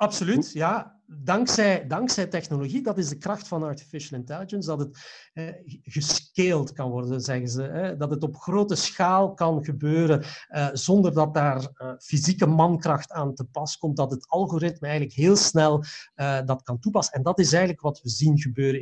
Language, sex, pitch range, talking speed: Dutch, male, 135-175 Hz, 180 wpm